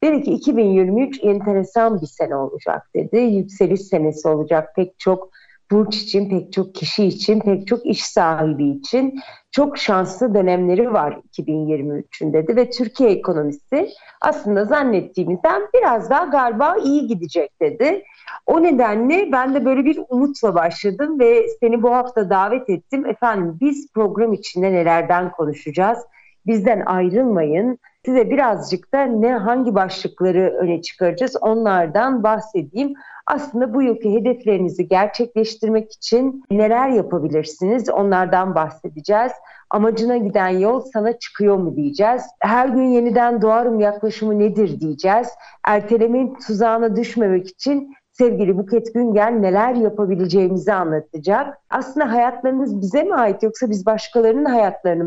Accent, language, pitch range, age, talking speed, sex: native, Turkish, 185-250 Hz, 40-59, 125 wpm, female